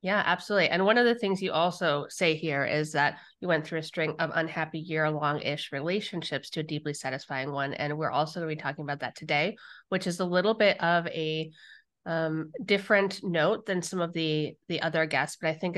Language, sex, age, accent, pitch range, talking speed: English, female, 30-49, American, 150-185 Hz, 215 wpm